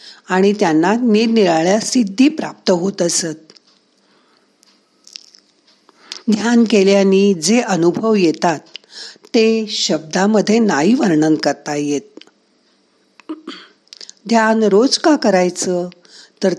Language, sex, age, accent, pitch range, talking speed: Marathi, female, 50-69, native, 165-225 Hz, 60 wpm